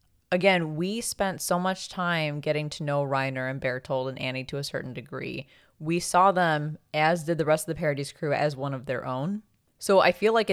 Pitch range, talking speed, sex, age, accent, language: 135-175 Hz, 215 wpm, female, 20-39, American, English